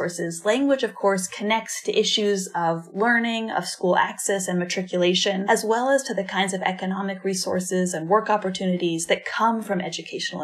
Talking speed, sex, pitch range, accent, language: 165 wpm, female, 185-225 Hz, American, English